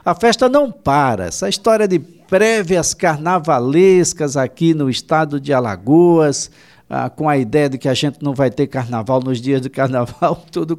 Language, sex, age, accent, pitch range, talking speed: Portuguese, male, 60-79, Brazilian, 115-165 Hz, 170 wpm